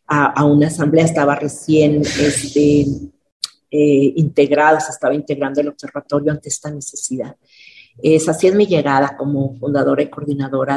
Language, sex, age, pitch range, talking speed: Spanish, female, 40-59, 145-165 Hz, 145 wpm